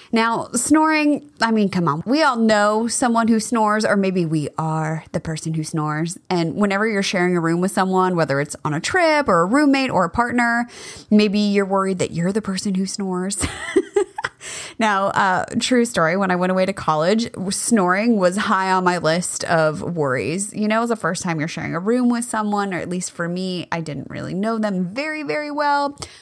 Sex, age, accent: female, 20-39, American